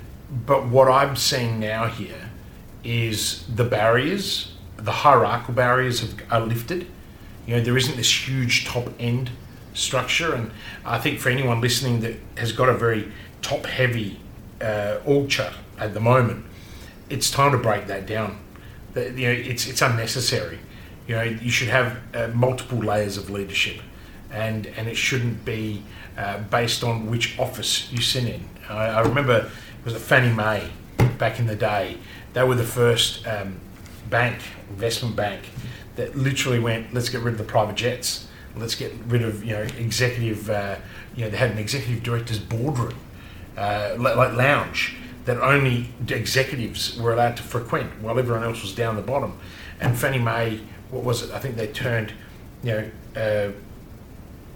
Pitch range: 105-125 Hz